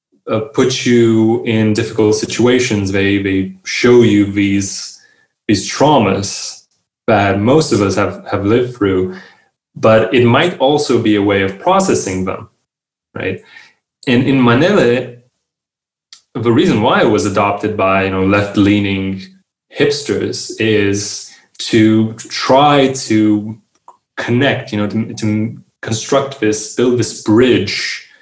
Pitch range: 100-115 Hz